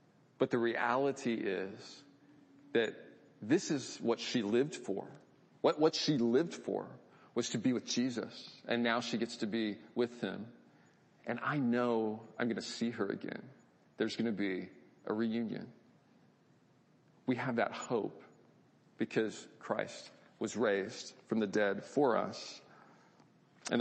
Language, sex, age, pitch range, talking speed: English, male, 40-59, 110-125 Hz, 145 wpm